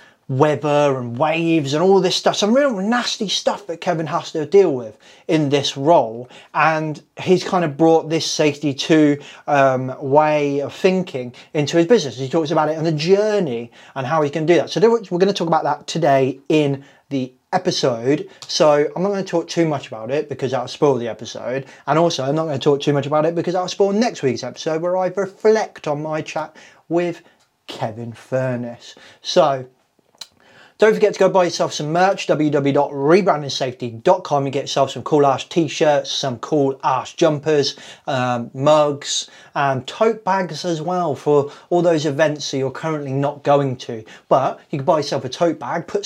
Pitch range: 140-180 Hz